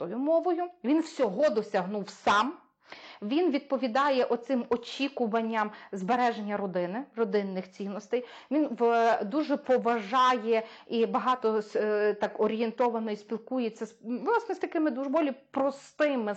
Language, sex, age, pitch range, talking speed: Ukrainian, female, 30-49, 215-270 Hz, 100 wpm